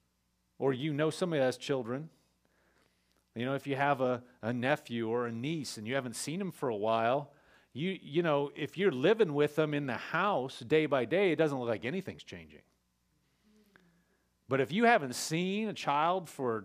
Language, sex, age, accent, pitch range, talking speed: English, male, 40-59, American, 115-165 Hz, 195 wpm